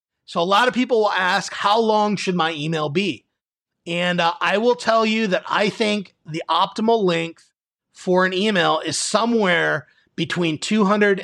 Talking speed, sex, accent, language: 170 wpm, male, American, English